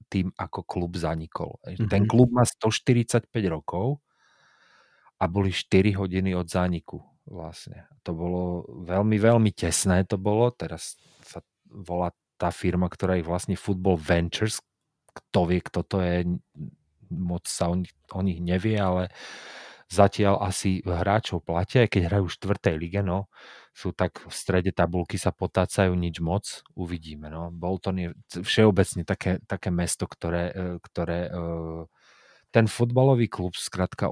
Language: Slovak